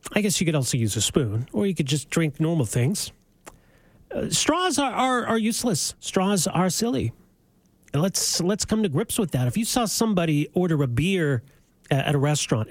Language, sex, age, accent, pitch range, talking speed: English, male, 40-59, American, 140-215 Hz, 200 wpm